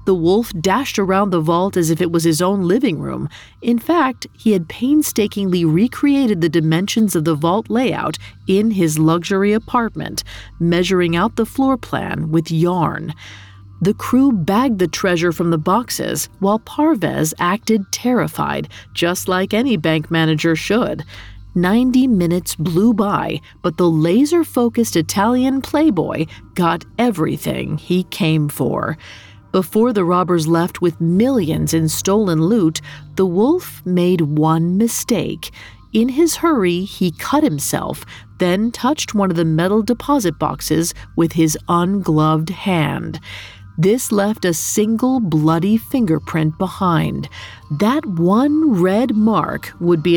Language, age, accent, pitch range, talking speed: English, 40-59, American, 160-220 Hz, 135 wpm